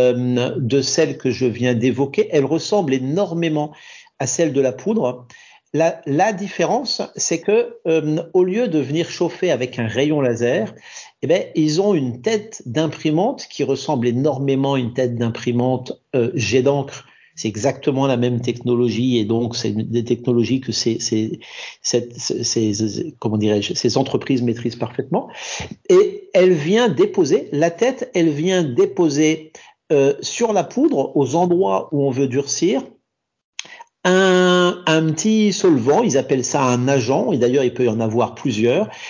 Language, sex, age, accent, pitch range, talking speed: French, male, 50-69, French, 130-185 Hz, 160 wpm